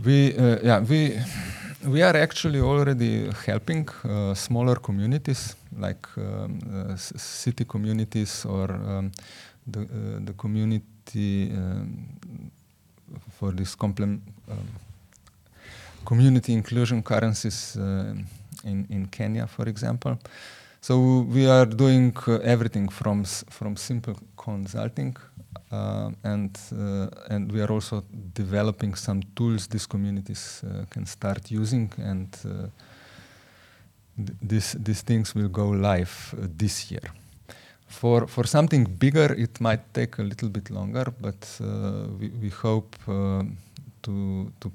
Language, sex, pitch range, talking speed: English, male, 100-120 Hz, 130 wpm